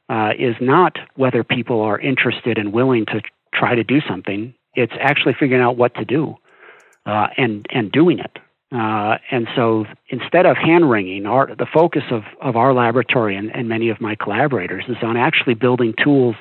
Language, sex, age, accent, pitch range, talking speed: English, male, 40-59, American, 110-130 Hz, 190 wpm